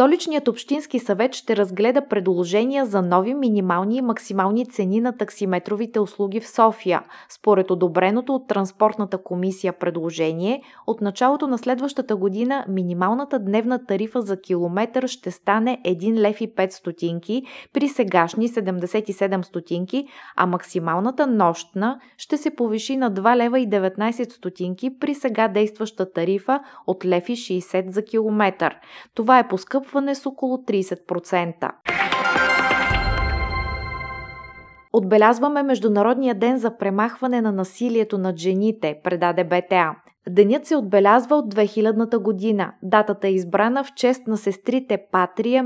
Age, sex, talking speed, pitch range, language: 20-39, female, 125 wpm, 190-245 Hz, Bulgarian